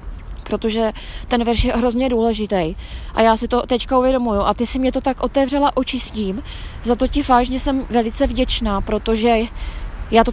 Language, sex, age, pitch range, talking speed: Czech, female, 20-39, 230-265 Hz, 175 wpm